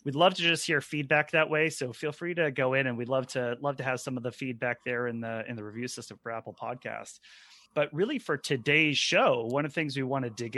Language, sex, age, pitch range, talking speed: English, male, 30-49, 130-155 Hz, 270 wpm